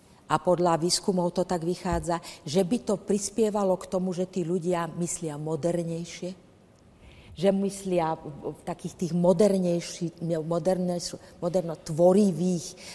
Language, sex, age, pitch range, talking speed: Czech, female, 50-69, 155-185 Hz, 100 wpm